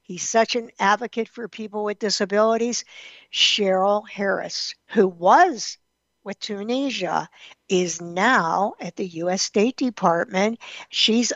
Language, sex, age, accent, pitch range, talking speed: English, female, 60-79, American, 185-240 Hz, 115 wpm